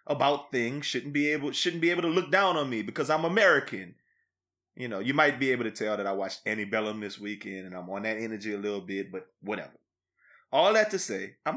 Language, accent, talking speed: English, American, 240 wpm